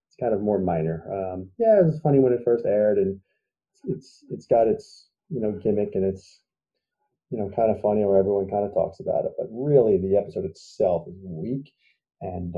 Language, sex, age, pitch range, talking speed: English, male, 30-49, 95-140 Hz, 210 wpm